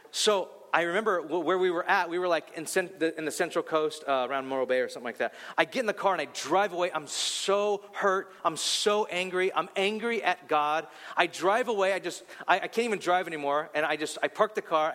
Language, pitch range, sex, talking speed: English, 160-215 Hz, male, 250 wpm